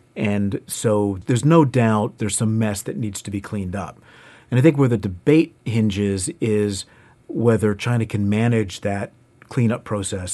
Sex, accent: male, American